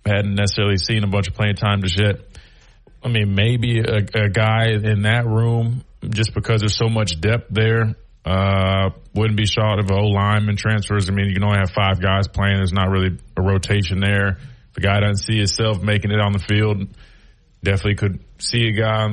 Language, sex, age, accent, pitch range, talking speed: English, male, 30-49, American, 105-125 Hz, 205 wpm